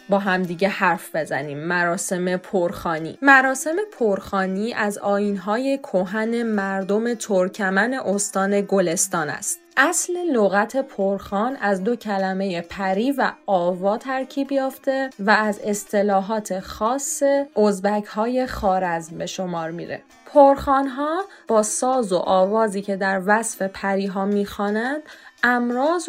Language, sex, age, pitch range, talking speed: English, female, 20-39, 195-245 Hz, 115 wpm